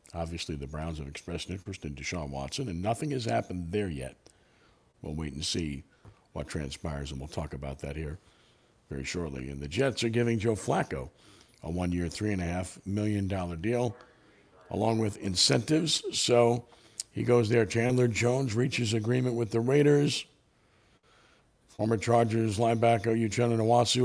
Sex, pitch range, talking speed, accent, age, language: male, 85-115 Hz, 150 wpm, American, 60-79, English